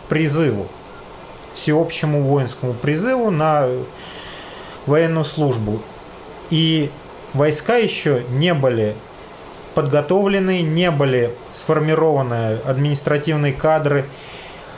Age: 30-49